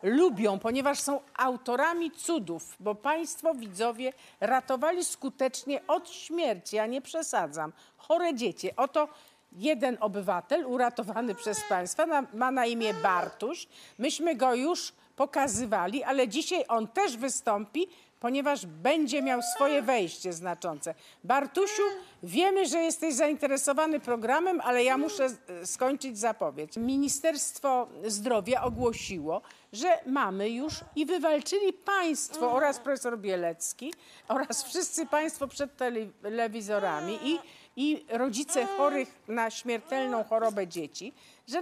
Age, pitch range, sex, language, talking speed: 50-69, 225-305 Hz, female, Polish, 110 wpm